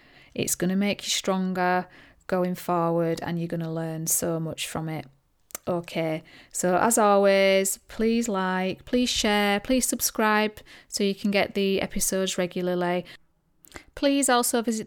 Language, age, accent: English, 30-49, British